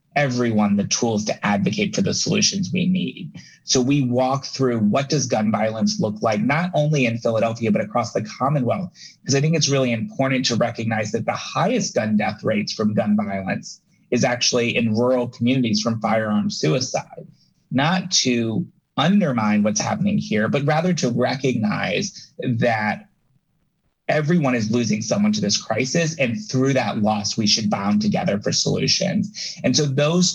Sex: male